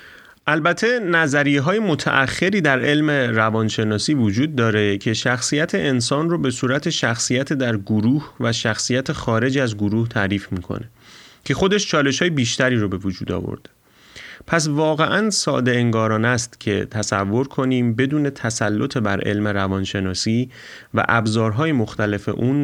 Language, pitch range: Persian, 105-130 Hz